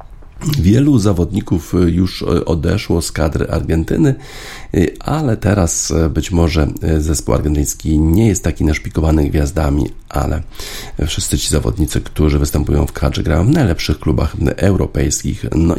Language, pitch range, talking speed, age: Polish, 75-95 Hz, 120 wpm, 50-69